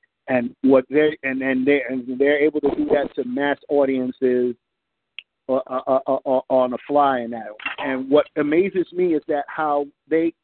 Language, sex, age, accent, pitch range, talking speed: English, male, 50-69, American, 130-155 Hz, 190 wpm